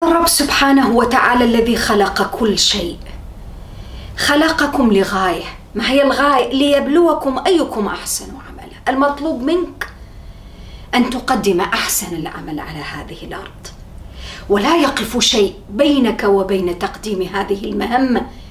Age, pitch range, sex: 40-59, 210-315 Hz, female